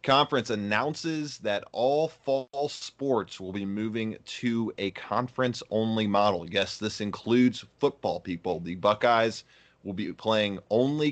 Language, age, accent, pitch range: English, 30-49, American, 95-115 Hz